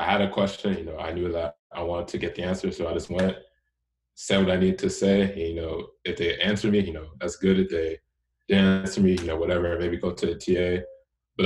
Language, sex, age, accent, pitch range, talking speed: English, male, 20-39, American, 80-95 Hz, 255 wpm